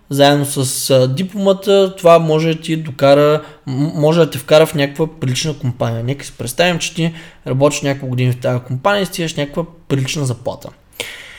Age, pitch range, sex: 20-39, 130-160 Hz, male